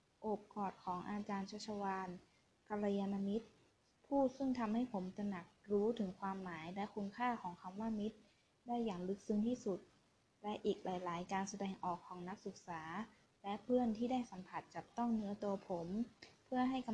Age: 20-39